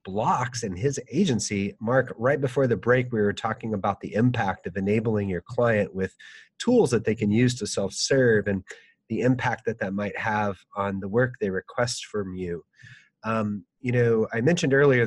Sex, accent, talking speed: male, American, 185 wpm